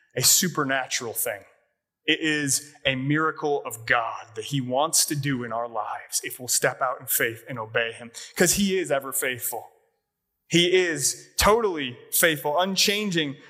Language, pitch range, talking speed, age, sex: English, 140-180 Hz, 160 wpm, 20-39, male